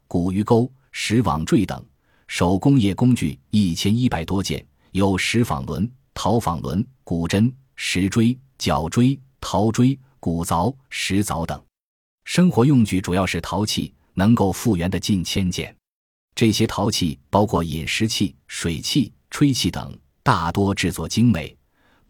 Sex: male